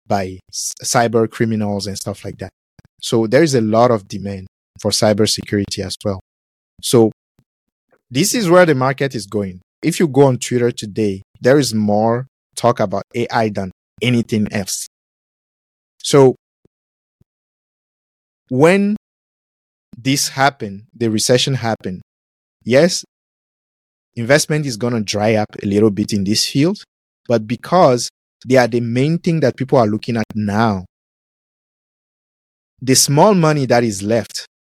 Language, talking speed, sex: English, 140 wpm, male